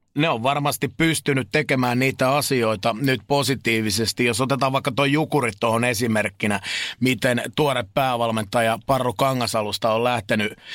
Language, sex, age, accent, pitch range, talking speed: Finnish, male, 30-49, native, 120-145 Hz, 130 wpm